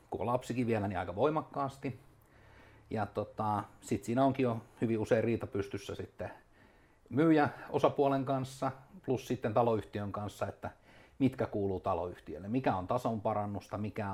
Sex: male